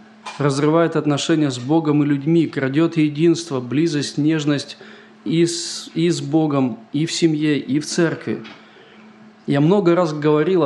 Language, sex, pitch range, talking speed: Russian, male, 145-175 Hz, 135 wpm